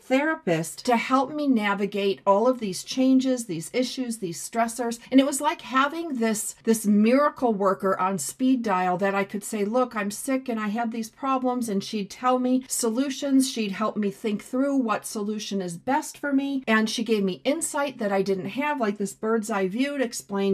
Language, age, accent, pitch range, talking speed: English, 40-59, American, 195-255 Hz, 200 wpm